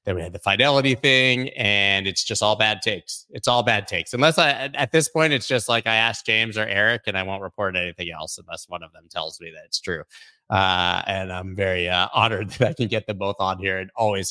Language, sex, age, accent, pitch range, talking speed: English, male, 30-49, American, 100-135 Hz, 250 wpm